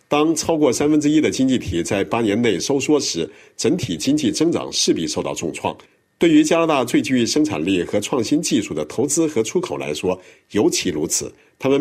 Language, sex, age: Chinese, male, 50-69